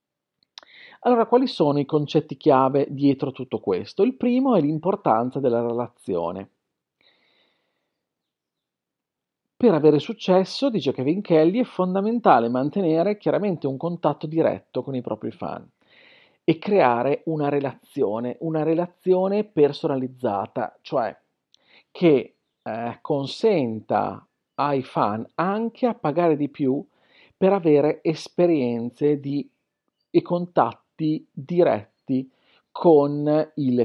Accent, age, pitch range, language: native, 40-59, 130-175 Hz, Italian